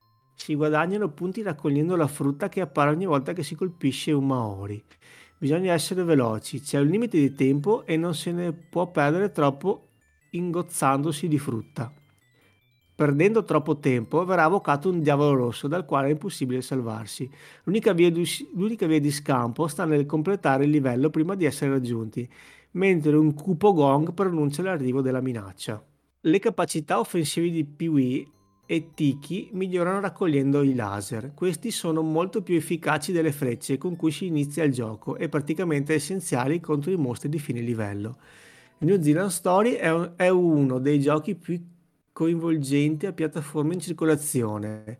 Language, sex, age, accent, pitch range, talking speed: Italian, male, 50-69, native, 135-175 Hz, 155 wpm